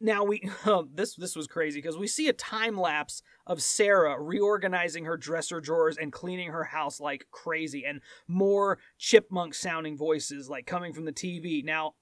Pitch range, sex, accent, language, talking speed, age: 175-220 Hz, male, American, English, 180 wpm, 30-49